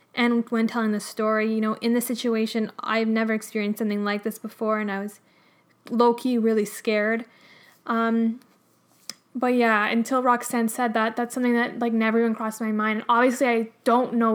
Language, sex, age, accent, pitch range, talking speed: English, female, 10-29, American, 220-245 Hz, 180 wpm